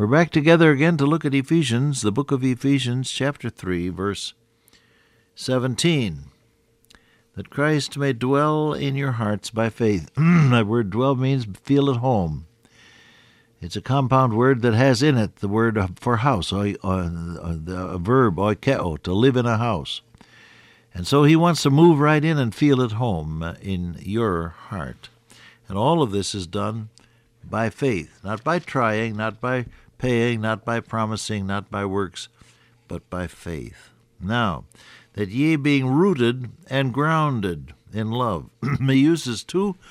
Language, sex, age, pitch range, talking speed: English, male, 60-79, 105-135 Hz, 155 wpm